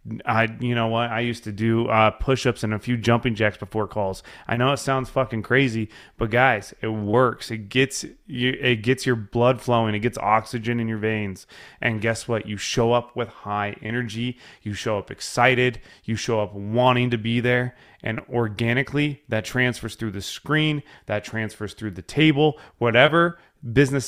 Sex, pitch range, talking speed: male, 105-125 Hz, 185 wpm